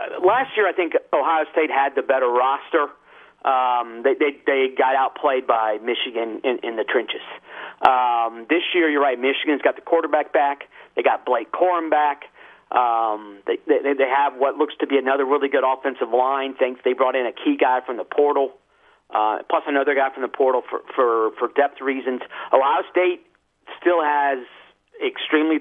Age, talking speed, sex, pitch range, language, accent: 50-69, 185 wpm, male, 125-170 Hz, English, American